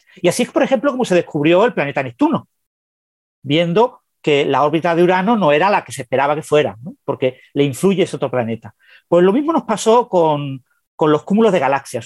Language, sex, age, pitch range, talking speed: Spanish, male, 40-59, 150-225 Hz, 210 wpm